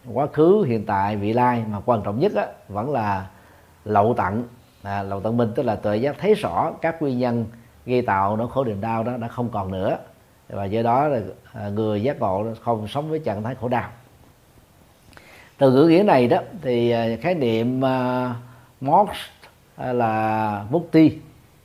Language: Vietnamese